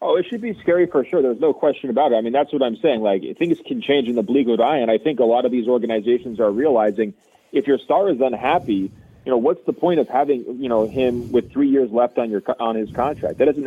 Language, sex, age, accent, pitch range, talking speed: English, male, 30-49, American, 105-125 Hz, 270 wpm